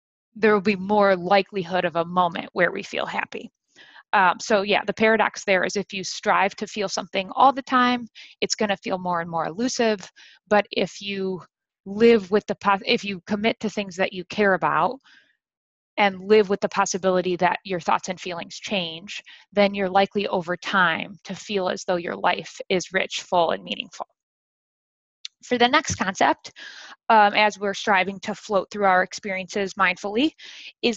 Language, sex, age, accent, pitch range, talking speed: English, female, 20-39, American, 185-220 Hz, 170 wpm